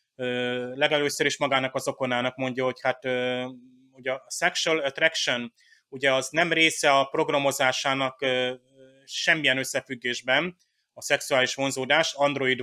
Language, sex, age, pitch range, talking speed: Hungarian, male, 30-49, 130-150 Hz, 115 wpm